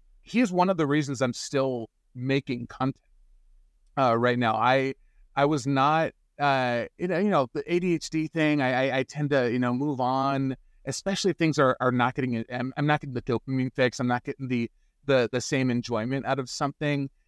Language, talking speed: English, 195 wpm